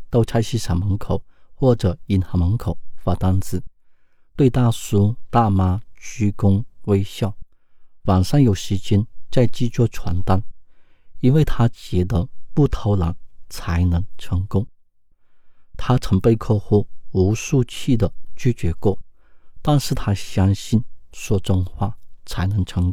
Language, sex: Chinese, male